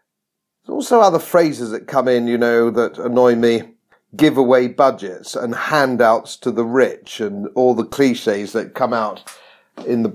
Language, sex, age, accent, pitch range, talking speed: English, male, 50-69, British, 125-205 Hz, 170 wpm